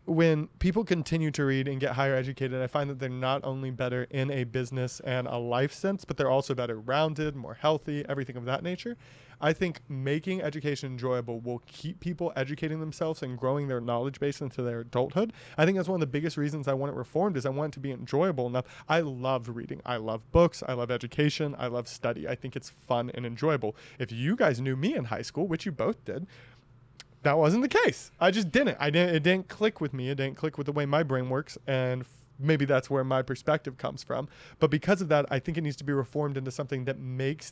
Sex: male